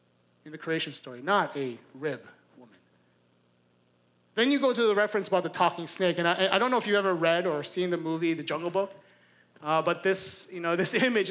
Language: English